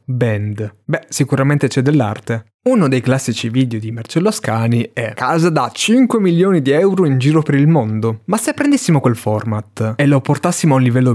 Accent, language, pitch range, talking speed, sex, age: native, Italian, 115-150 Hz, 190 wpm, male, 20-39